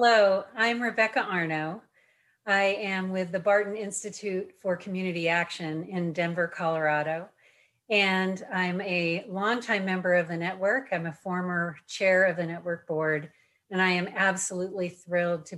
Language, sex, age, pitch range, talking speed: English, female, 40-59, 170-200 Hz, 145 wpm